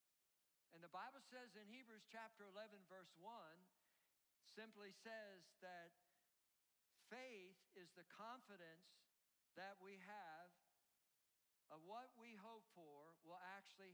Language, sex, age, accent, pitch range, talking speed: English, male, 60-79, American, 195-245 Hz, 115 wpm